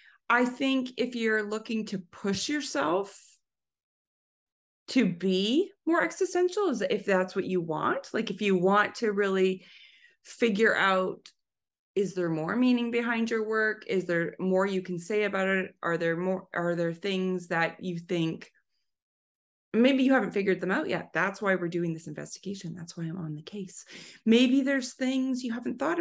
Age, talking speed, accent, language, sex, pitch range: 30-49, 170 wpm, American, English, female, 175-225 Hz